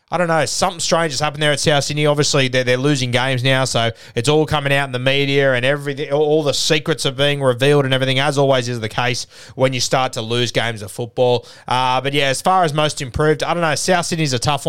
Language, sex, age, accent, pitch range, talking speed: English, male, 20-39, Australian, 135-170 Hz, 260 wpm